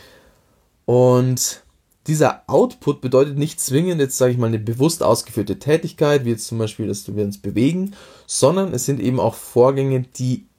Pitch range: 110-140 Hz